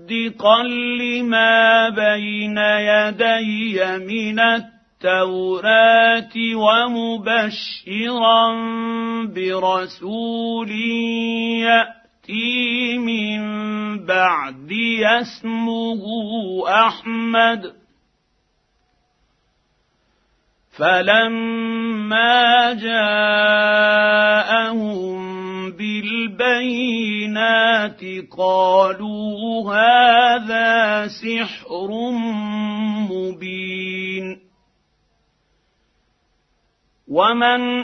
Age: 50-69